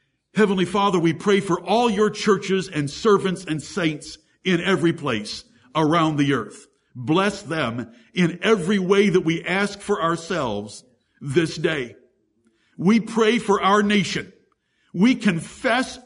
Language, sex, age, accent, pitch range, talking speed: English, male, 60-79, American, 155-210 Hz, 140 wpm